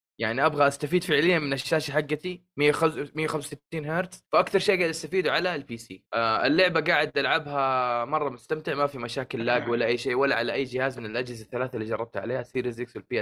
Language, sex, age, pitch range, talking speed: Arabic, male, 20-39, 130-185 Hz, 185 wpm